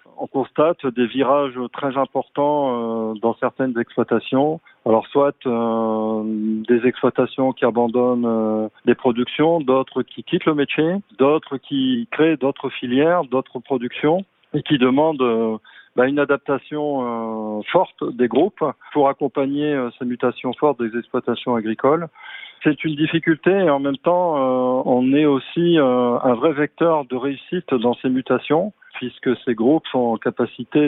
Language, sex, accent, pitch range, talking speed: French, male, French, 120-145 Hz, 140 wpm